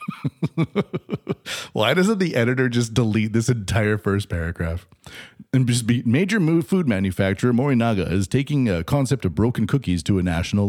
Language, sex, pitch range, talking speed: English, male, 95-125 Hz, 150 wpm